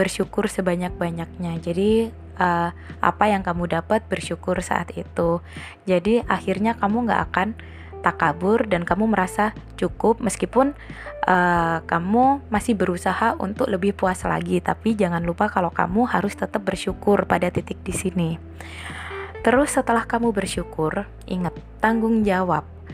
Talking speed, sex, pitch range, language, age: 130 wpm, female, 170-210 Hz, Indonesian, 20-39